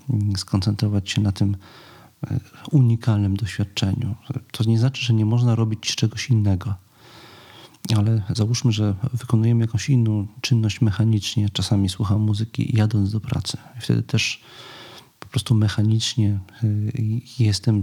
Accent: native